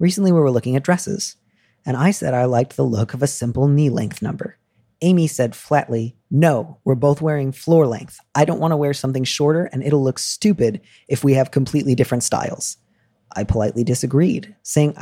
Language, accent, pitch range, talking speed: English, American, 125-155 Hz, 195 wpm